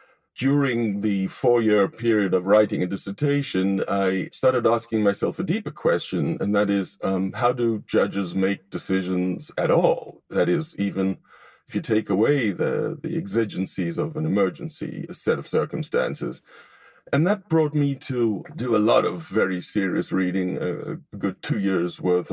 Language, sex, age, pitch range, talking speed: English, male, 50-69, 95-120 Hz, 160 wpm